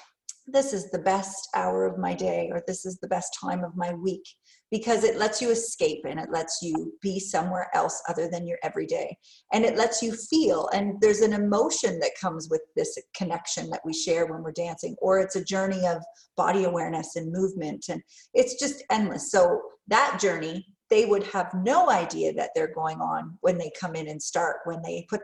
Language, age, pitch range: English, 40-59, 180-245 Hz